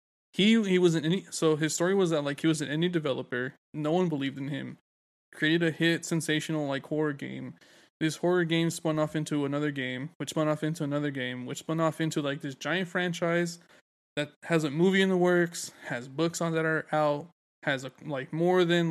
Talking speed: 215 wpm